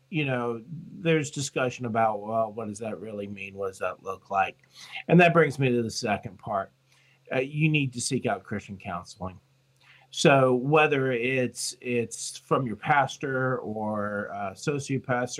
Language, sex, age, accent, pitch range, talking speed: English, male, 40-59, American, 115-135 Hz, 165 wpm